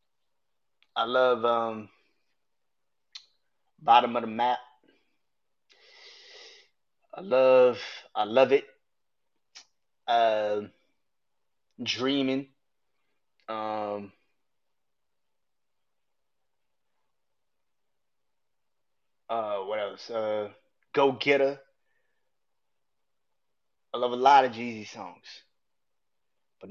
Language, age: English, 20-39